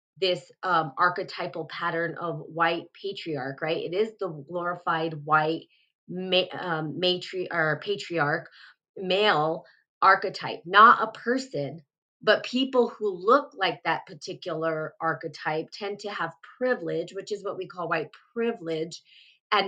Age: 20-39